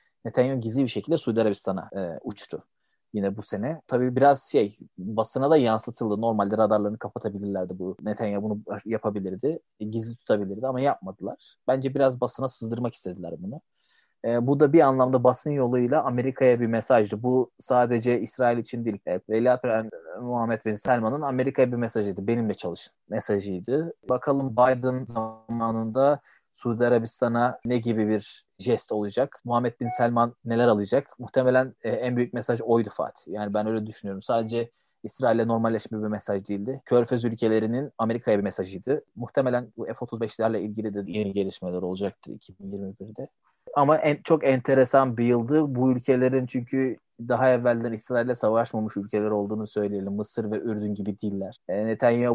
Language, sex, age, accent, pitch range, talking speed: Turkish, male, 30-49, native, 105-125 Hz, 150 wpm